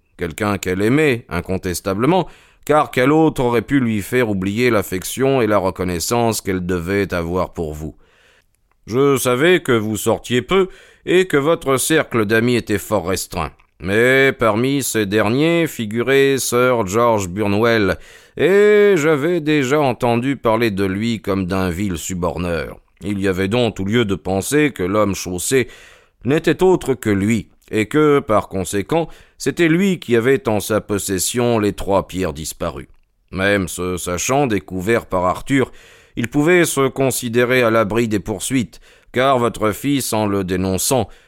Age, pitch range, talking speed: 40-59, 95-135 Hz, 150 wpm